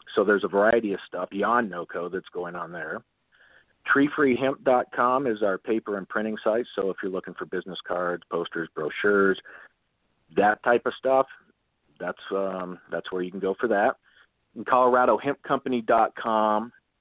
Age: 40-59